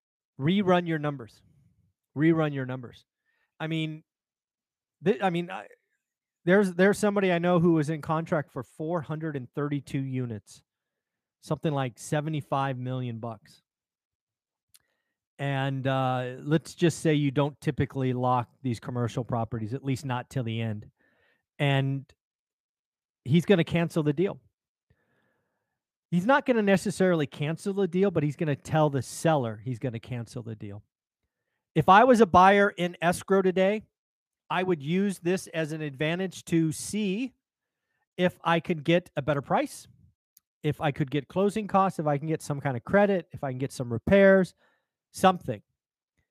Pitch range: 135-185 Hz